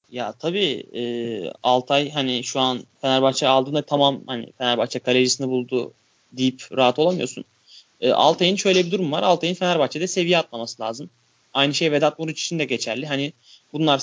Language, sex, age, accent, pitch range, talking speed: Turkish, male, 30-49, native, 130-180 Hz, 160 wpm